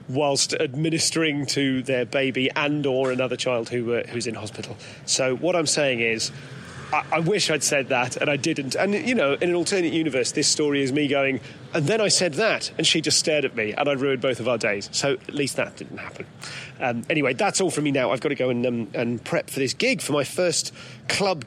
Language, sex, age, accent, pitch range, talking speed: English, male, 30-49, British, 135-170 Hz, 240 wpm